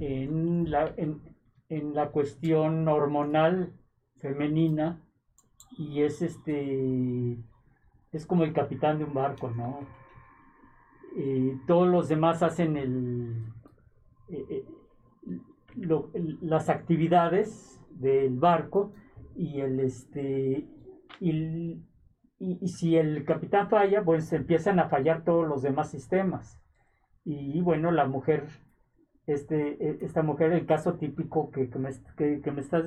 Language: Spanish